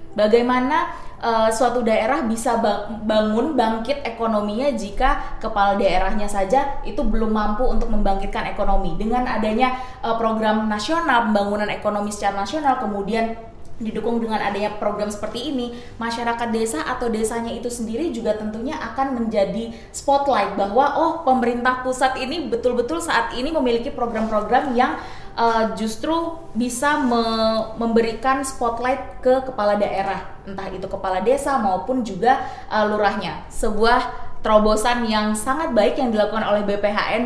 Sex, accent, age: female, native, 20-39